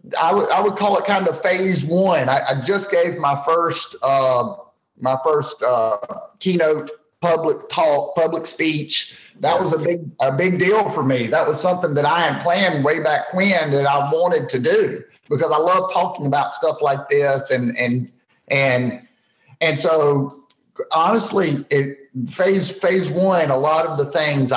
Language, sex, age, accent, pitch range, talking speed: English, male, 30-49, American, 140-175 Hz, 175 wpm